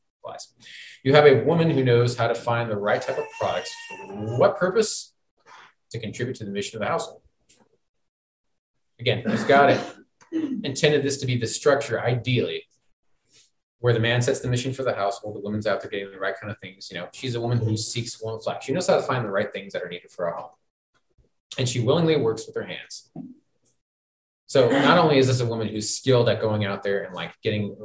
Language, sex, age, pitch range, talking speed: English, male, 30-49, 105-135 Hz, 220 wpm